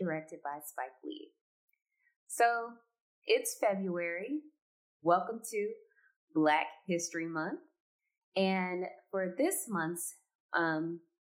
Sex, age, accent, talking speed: female, 20-39, American, 90 wpm